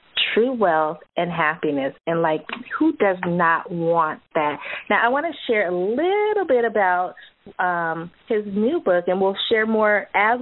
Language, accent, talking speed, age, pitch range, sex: English, American, 165 wpm, 30-49, 170-225 Hz, female